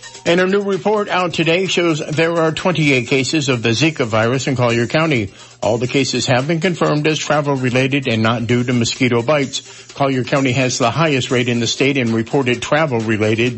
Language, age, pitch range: English, 60-79, 125-160 Hz